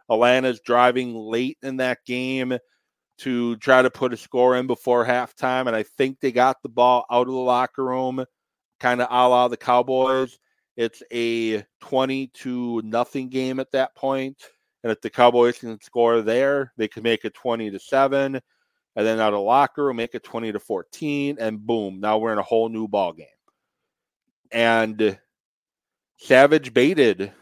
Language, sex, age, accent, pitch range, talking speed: English, male, 30-49, American, 115-130 Hz, 175 wpm